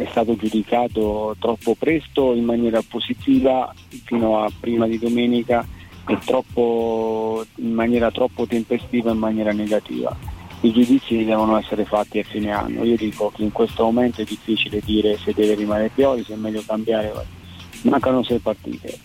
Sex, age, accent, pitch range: male, 30-49, native, 105-115 Hz